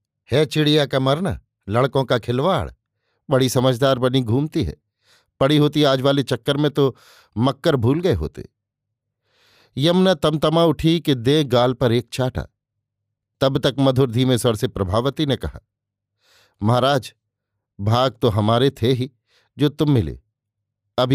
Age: 50-69